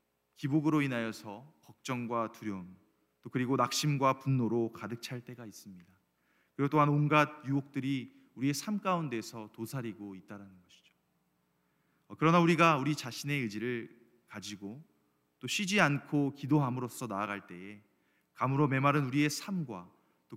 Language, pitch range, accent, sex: Korean, 100-140 Hz, native, male